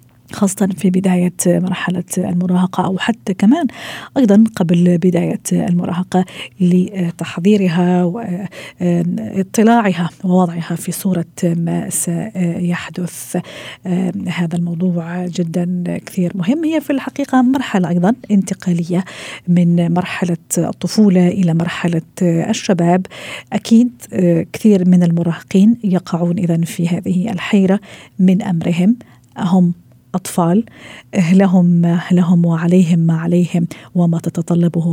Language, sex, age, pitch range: Arabic, female, 40-59, 170-195 Hz